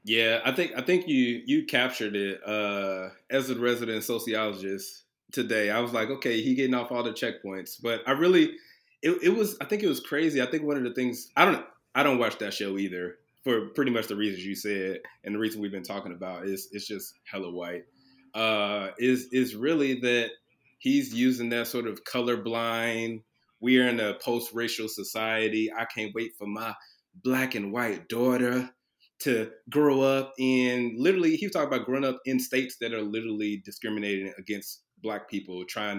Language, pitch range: English, 105-130 Hz